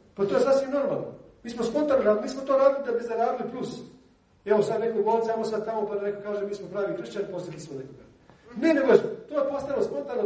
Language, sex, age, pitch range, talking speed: Croatian, male, 40-59, 170-220 Hz, 235 wpm